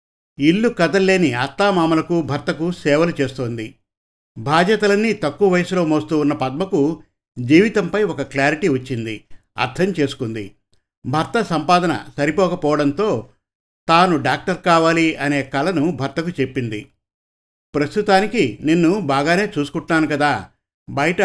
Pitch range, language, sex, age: 135-170 Hz, Telugu, male, 50-69